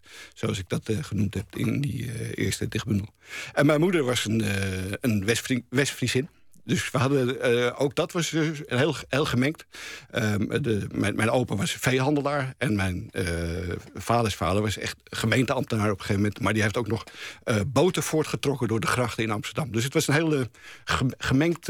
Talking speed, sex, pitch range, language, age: 190 wpm, male, 110-140 Hz, Dutch, 50-69